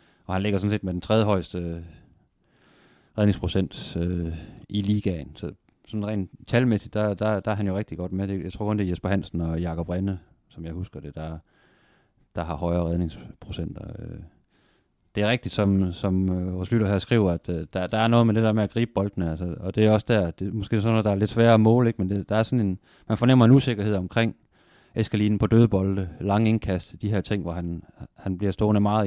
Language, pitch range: Danish, 90-105 Hz